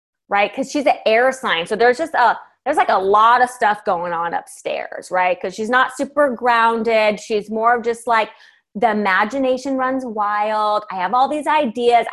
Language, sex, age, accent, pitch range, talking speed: English, female, 20-39, American, 195-245 Hz, 185 wpm